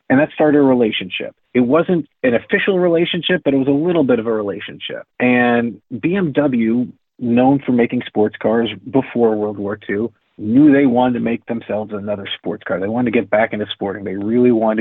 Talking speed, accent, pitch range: 200 wpm, American, 110-135 Hz